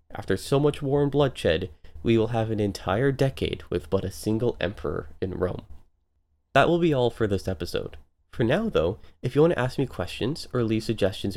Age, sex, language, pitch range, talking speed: 20-39, male, English, 85-130 Hz, 200 wpm